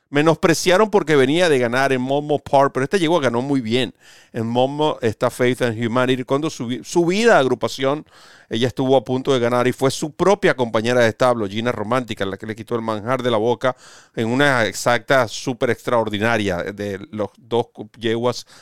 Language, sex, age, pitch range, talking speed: Spanish, male, 40-59, 125-155 Hz, 190 wpm